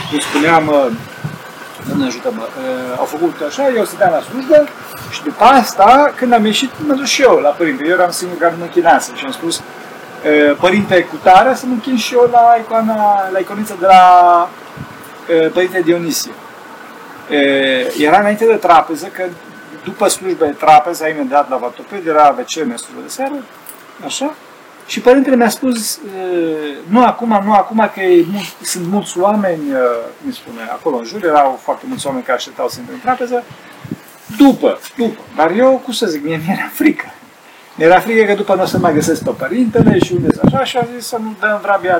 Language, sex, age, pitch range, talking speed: Romanian, male, 40-59, 165-245 Hz, 165 wpm